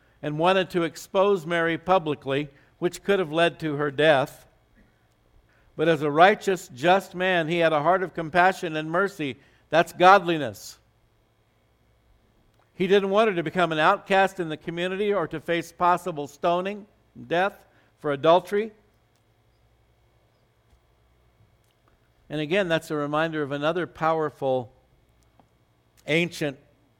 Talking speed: 125 wpm